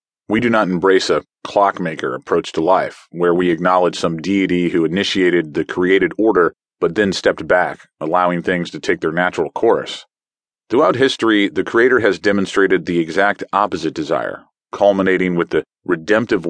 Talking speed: 160 wpm